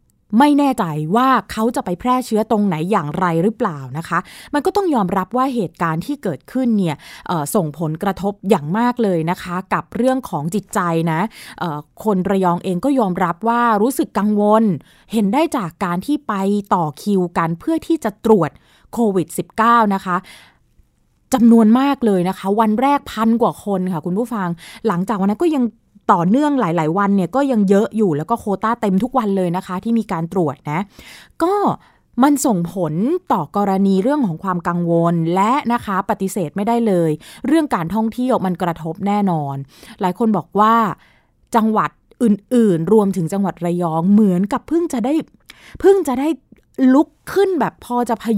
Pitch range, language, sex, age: 180-245 Hz, Thai, female, 20-39